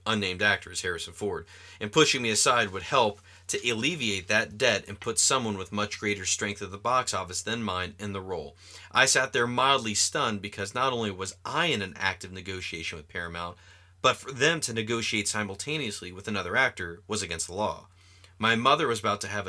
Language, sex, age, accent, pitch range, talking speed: English, male, 30-49, American, 90-110 Hz, 200 wpm